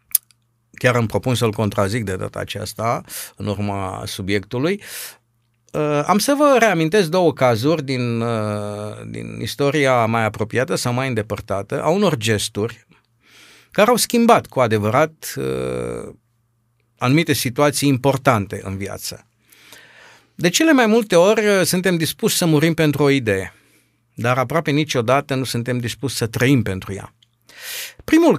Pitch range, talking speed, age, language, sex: 115-165 Hz, 130 wpm, 50-69, Romanian, male